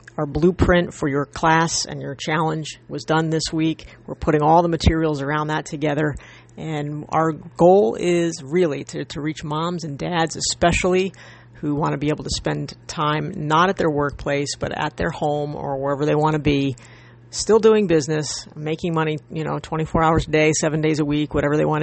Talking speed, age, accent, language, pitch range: 200 wpm, 40-59, American, English, 145-170 Hz